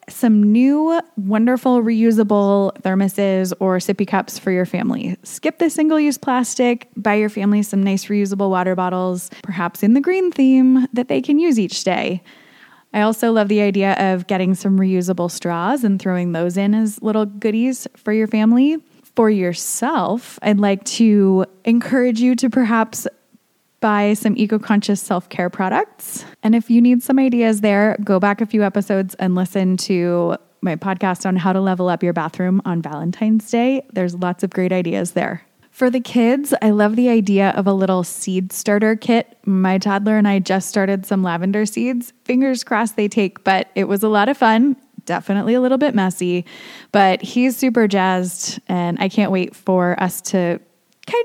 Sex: female